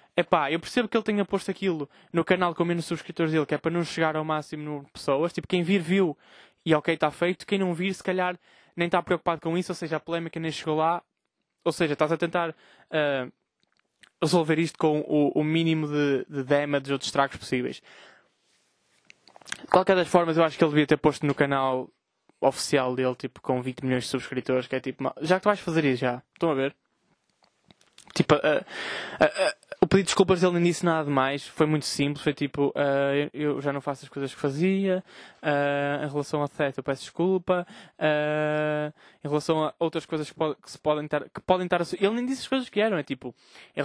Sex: male